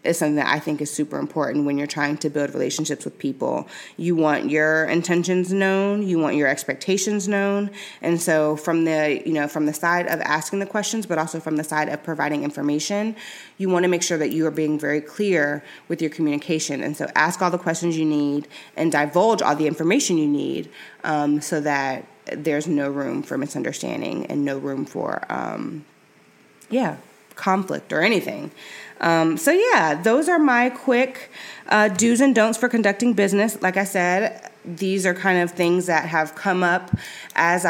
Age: 20-39